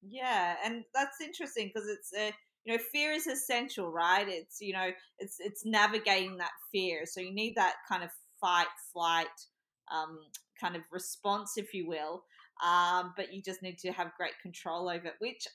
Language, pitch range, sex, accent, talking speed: English, 185-235 Hz, female, Australian, 185 wpm